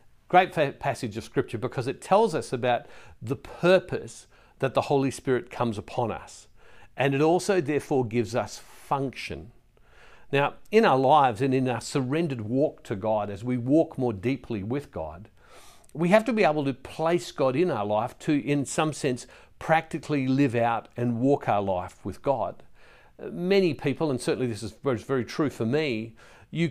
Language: English